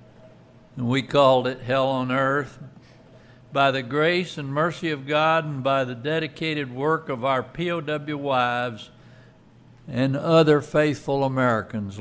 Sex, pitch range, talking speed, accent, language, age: male, 125-155 Hz, 130 wpm, American, English, 60-79